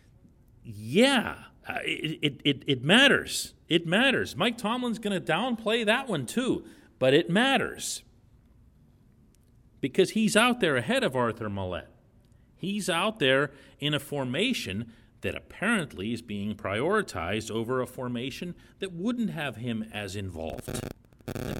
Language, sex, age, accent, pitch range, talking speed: English, male, 40-59, American, 115-175 Hz, 130 wpm